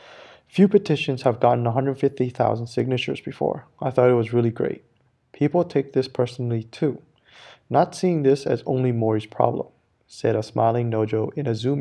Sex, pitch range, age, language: male, 115-135 Hz, 30-49, Japanese